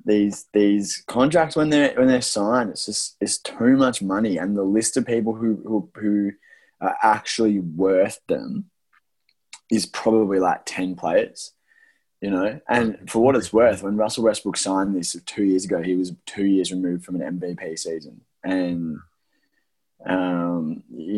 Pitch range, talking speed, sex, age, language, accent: 90-110 Hz, 160 wpm, male, 20-39, English, Australian